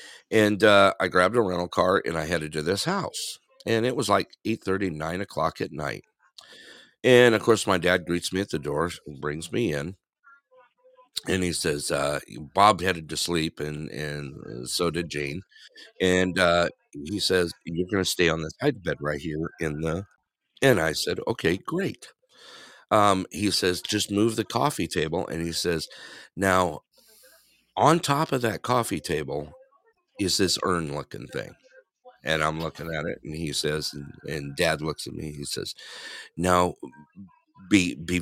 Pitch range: 80-115 Hz